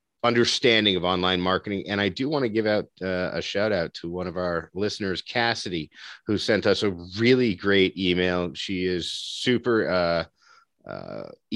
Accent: American